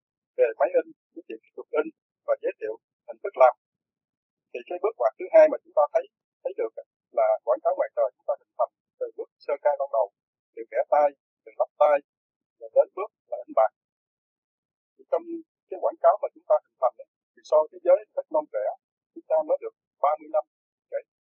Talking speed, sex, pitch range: 210 wpm, male, 285-400 Hz